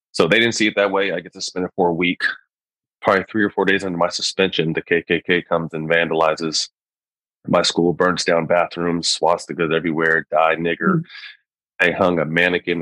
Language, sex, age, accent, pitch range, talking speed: English, male, 30-49, American, 85-95 Hz, 190 wpm